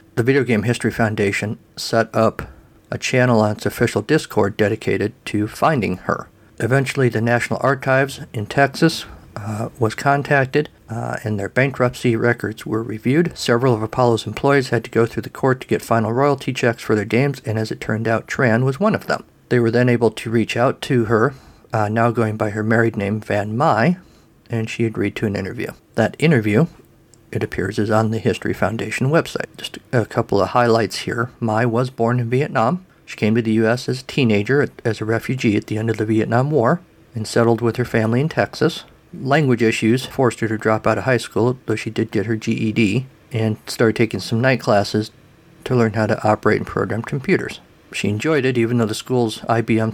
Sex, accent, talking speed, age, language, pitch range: male, American, 205 wpm, 50-69, English, 110-130 Hz